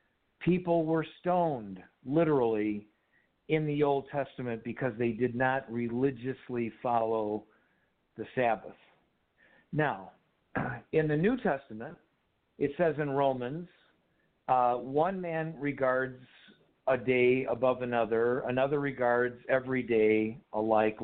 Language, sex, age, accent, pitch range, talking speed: English, male, 50-69, American, 125-170 Hz, 110 wpm